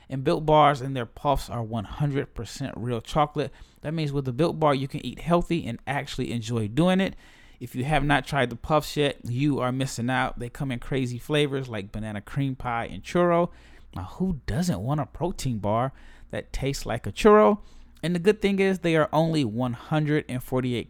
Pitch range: 120-150 Hz